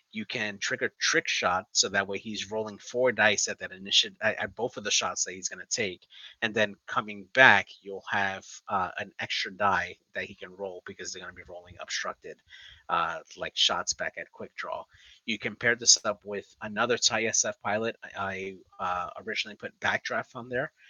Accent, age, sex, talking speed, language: American, 30-49, male, 200 wpm, English